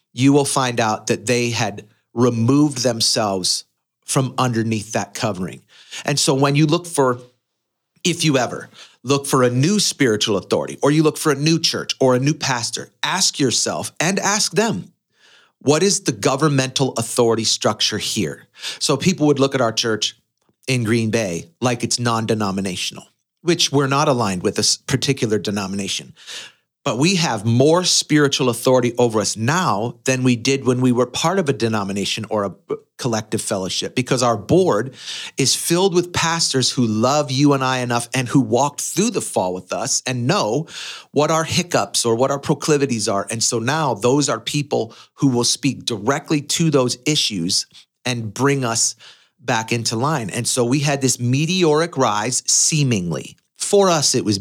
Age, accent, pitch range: 40-59, American, 115-145 Hz